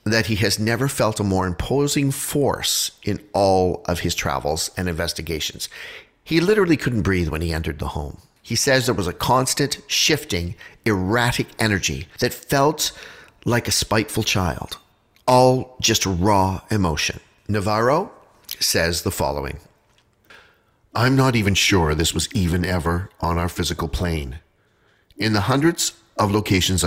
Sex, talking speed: male, 145 wpm